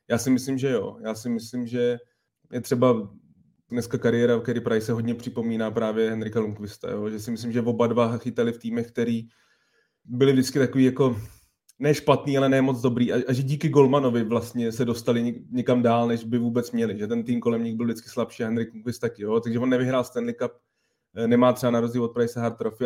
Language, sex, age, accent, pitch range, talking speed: Czech, male, 20-39, native, 115-125 Hz, 215 wpm